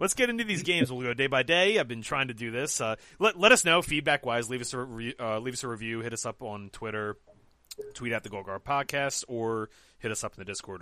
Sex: male